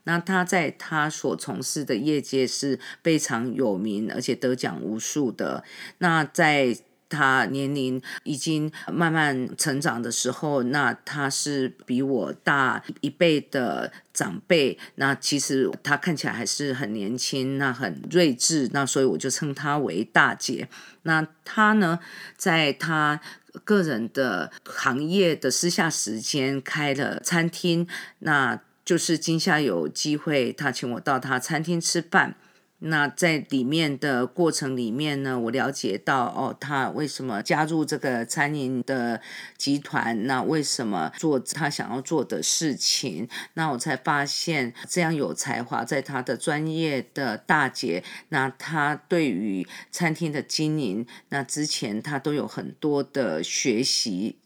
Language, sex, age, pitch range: English, female, 40-59, 130-160 Hz